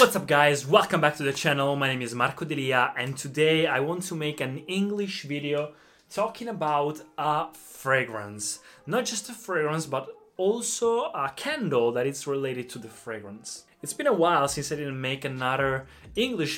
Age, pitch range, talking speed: 20-39, 130-165 Hz, 180 wpm